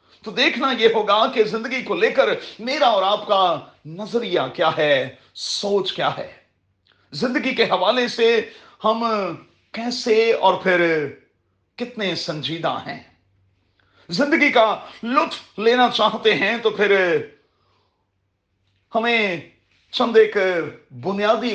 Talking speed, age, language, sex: 115 wpm, 40-59, Urdu, male